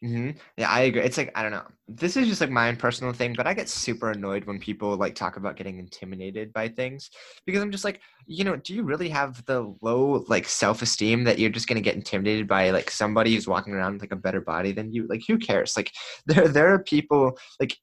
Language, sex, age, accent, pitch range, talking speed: English, male, 20-39, American, 95-125 Hz, 250 wpm